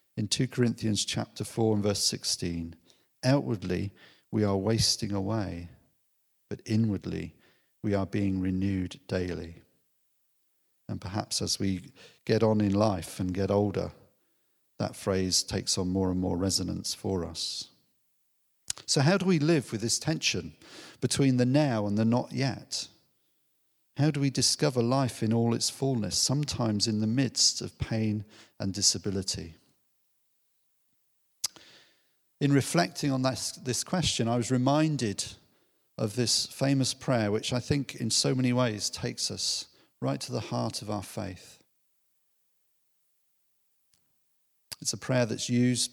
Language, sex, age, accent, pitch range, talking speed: English, male, 40-59, British, 100-125 Hz, 140 wpm